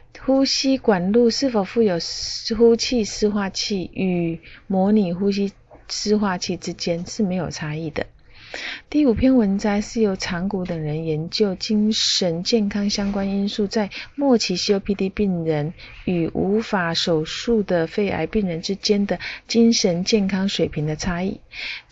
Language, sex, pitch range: Chinese, female, 175-220 Hz